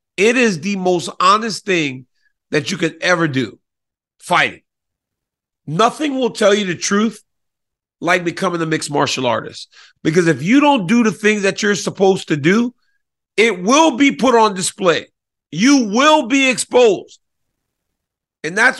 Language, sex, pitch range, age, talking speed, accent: English, male, 145-215 Hz, 40-59, 155 wpm, American